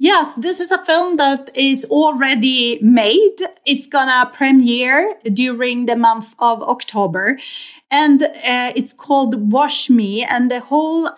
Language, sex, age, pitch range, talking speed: English, female, 30-49, 225-280 Hz, 145 wpm